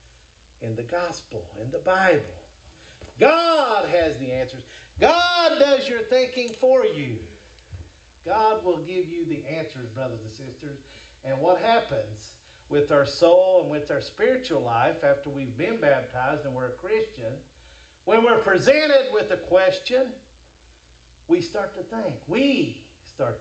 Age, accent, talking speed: 50-69, American, 145 wpm